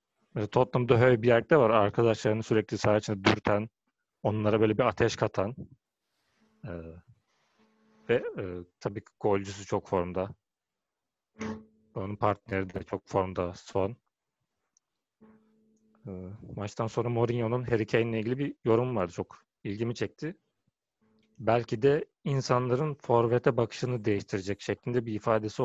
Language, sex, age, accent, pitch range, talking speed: Turkish, male, 40-59, native, 105-135 Hz, 120 wpm